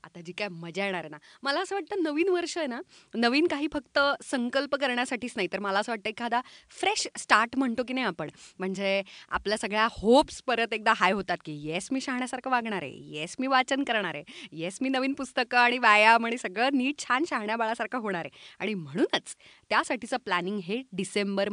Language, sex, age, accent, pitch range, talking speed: Marathi, female, 30-49, native, 190-260 Hz, 140 wpm